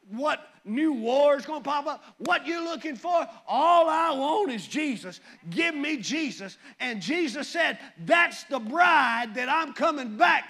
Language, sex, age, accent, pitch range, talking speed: English, male, 40-59, American, 265-345 Hz, 170 wpm